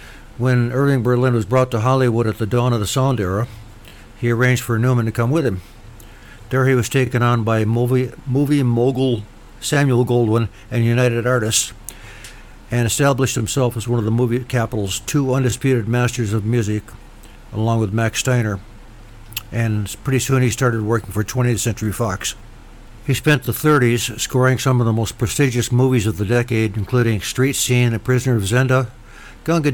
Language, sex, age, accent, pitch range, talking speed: English, male, 60-79, American, 110-130 Hz, 175 wpm